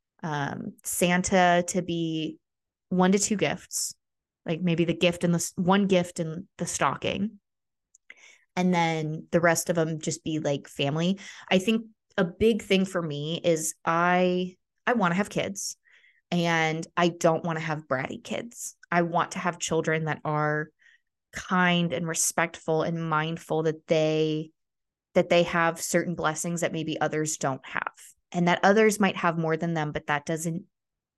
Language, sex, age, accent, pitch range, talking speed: English, female, 20-39, American, 155-185 Hz, 165 wpm